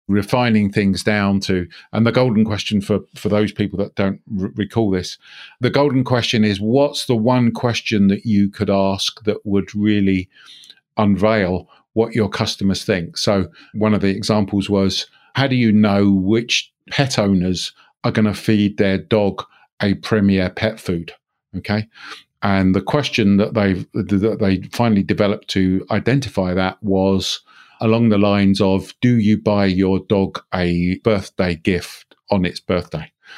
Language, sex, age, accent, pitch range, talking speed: English, male, 50-69, British, 95-115 Hz, 155 wpm